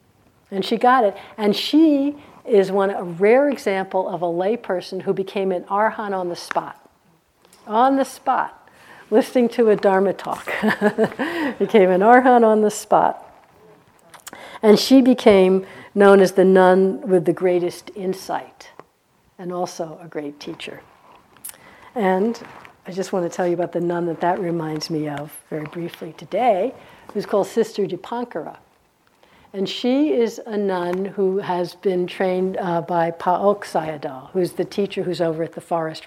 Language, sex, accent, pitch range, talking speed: English, female, American, 175-210 Hz, 160 wpm